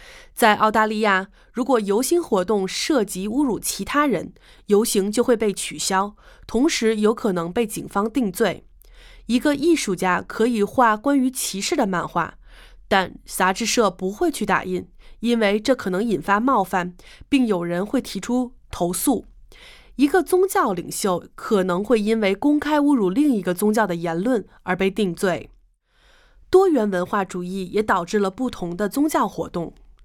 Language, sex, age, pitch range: English, female, 20-39, 190-255 Hz